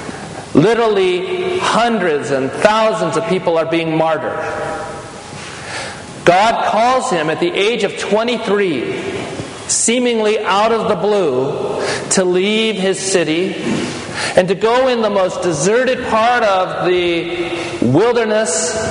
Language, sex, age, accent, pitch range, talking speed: English, male, 40-59, American, 185-235 Hz, 115 wpm